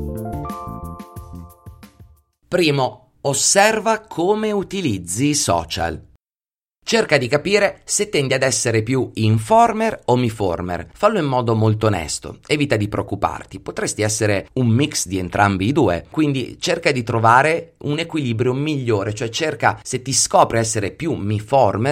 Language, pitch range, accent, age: Italian, 105-145 Hz, native, 30-49